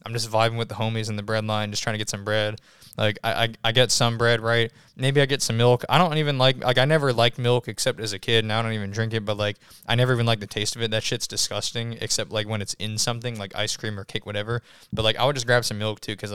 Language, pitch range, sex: English, 105-125 Hz, male